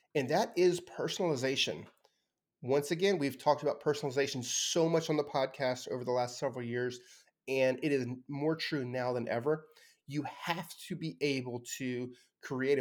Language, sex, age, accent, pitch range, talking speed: English, male, 30-49, American, 125-155 Hz, 165 wpm